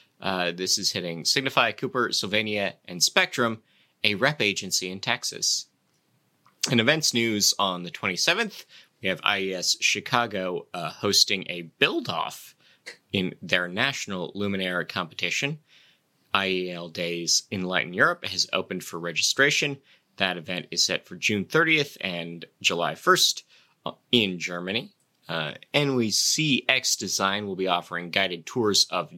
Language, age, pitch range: English, 30-49, 90-125 Hz